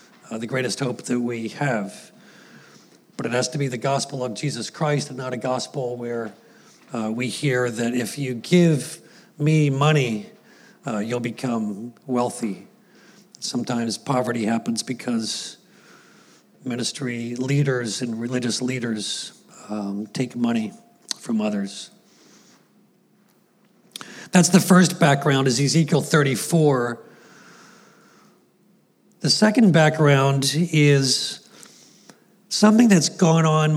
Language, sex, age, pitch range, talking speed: English, male, 50-69, 130-170 Hz, 115 wpm